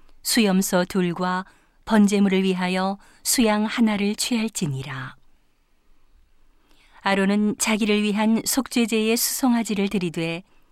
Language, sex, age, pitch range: Korean, female, 40-59, 180-215 Hz